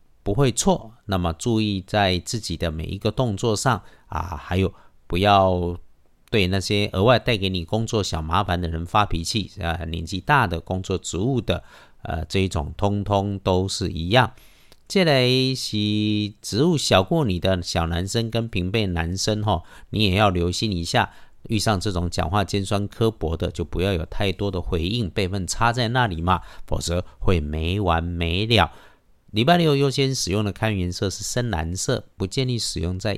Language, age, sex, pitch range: Chinese, 50-69, male, 85-115 Hz